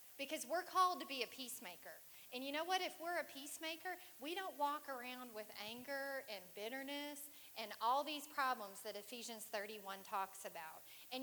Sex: female